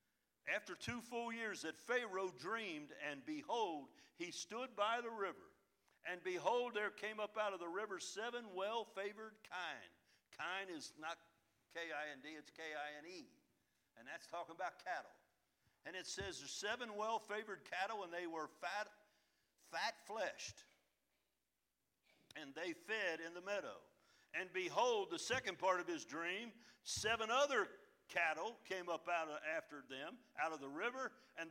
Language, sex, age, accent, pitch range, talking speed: English, male, 60-79, American, 170-250 Hz, 145 wpm